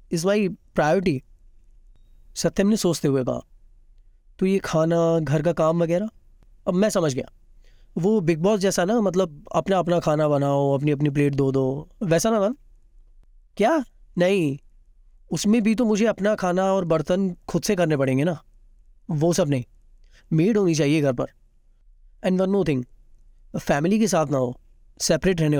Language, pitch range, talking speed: Hindi, 140-190 Hz, 165 wpm